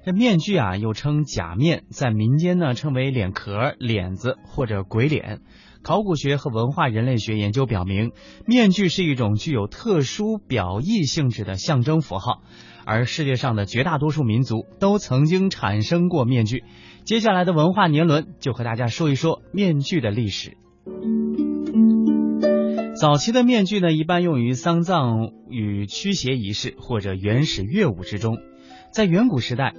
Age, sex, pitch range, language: 30-49, male, 110-160 Hz, Chinese